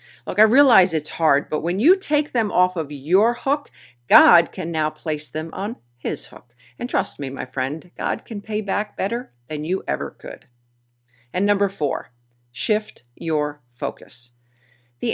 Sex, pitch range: female, 140-205 Hz